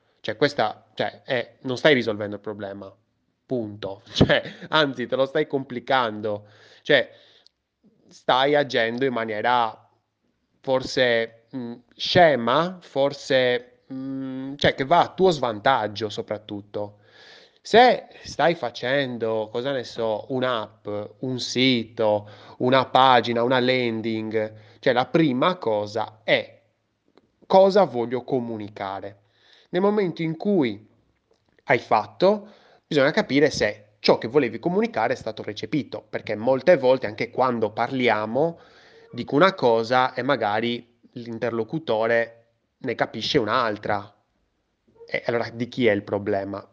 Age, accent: 20-39, native